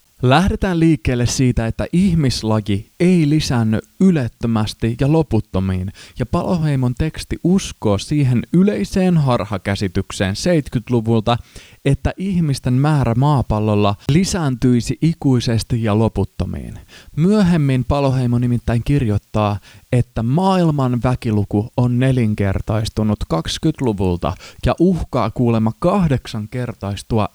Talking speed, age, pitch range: 90 wpm, 20-39, 105-145 Hz